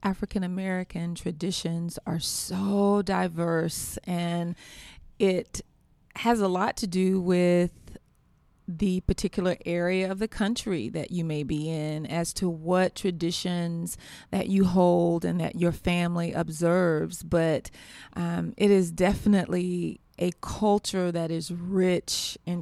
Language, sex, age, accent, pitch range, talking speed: English, female, 30-49, American, 170-200 Hz, 125 wpm